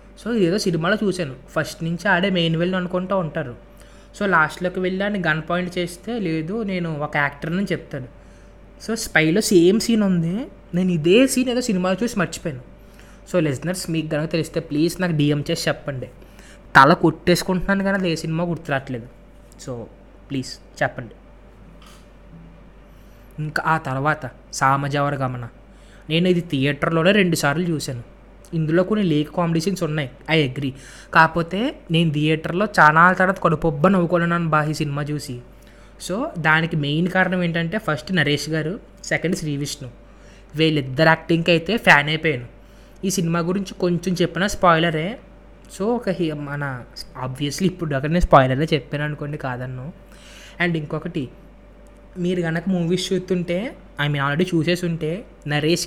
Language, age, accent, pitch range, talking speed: Telugu, 20-39, native, 145-180 Hz, 135 wpm